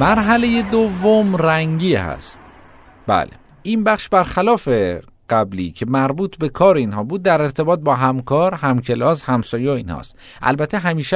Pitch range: 95-160 Hz